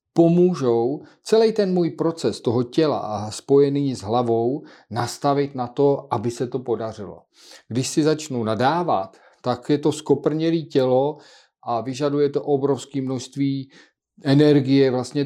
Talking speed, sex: 135 wpm, male